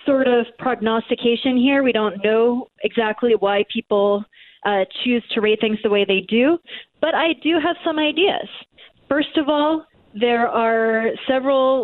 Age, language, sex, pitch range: 30-49, English, female, 200-245 Hz